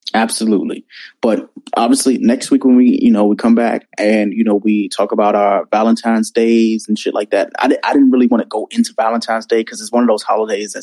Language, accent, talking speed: English, American, 225 wpm